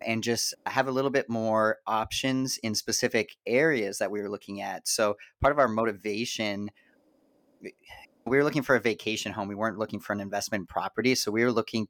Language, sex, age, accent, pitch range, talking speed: English, male, 30-49, American, 100-120 Hz, 195 wpm